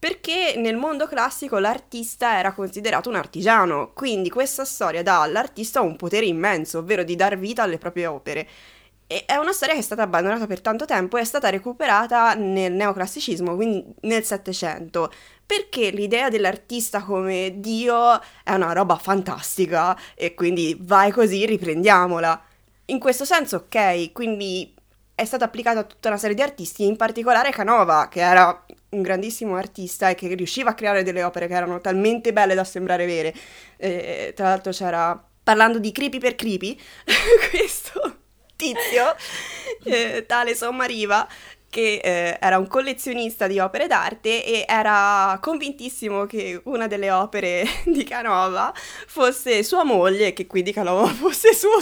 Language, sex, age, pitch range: Italian, female, 20-39, 185-245 Hz